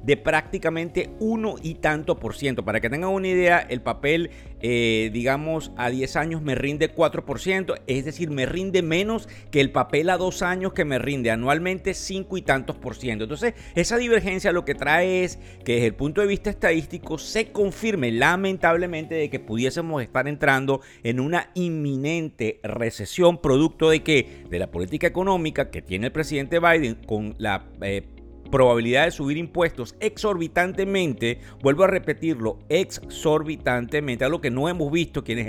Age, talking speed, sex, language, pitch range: 50-69, 165 wpm, male, Spanish, 120-170 Hz